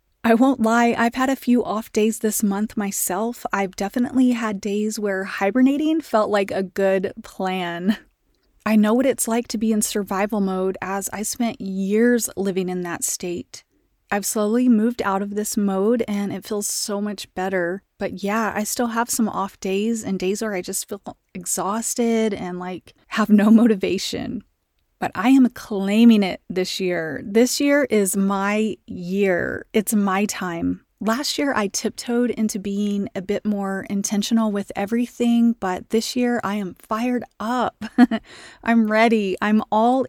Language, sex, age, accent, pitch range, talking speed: English, female, 30-49, American, 195-230 Hz, 170 wpm